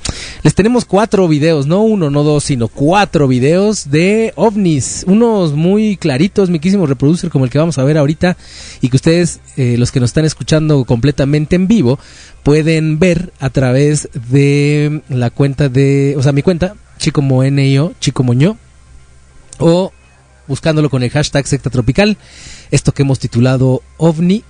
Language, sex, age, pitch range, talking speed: Spanish, male, 30-49, 120-170 Hz, 155 wpm